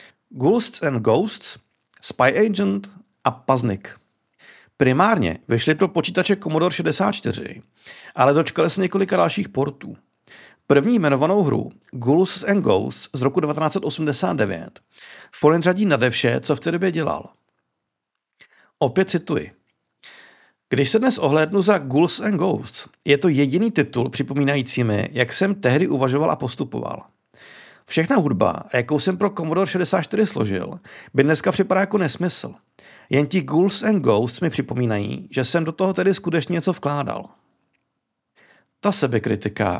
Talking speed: 135 wpm